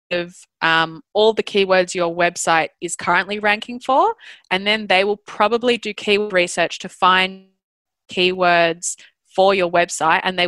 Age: 20-39